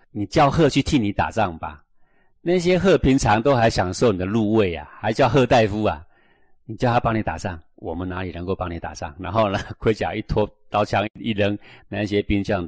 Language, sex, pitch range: Chinese, male, 90-125 Hz